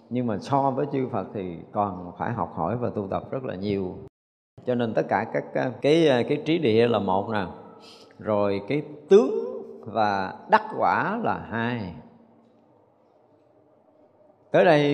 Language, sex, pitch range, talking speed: Vietnamese, male, 100-140 Hz, 155 wpm